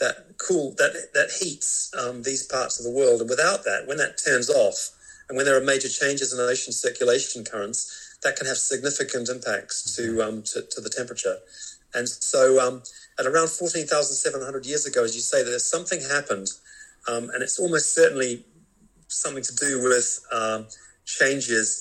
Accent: British